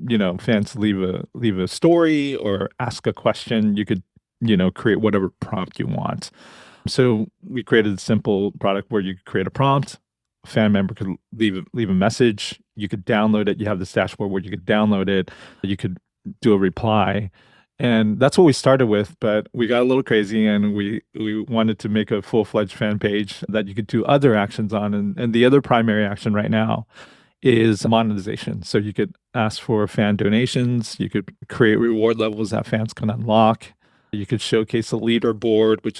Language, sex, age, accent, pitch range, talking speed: English, male, 30-49, American, 105-120 Hz, 200 wpm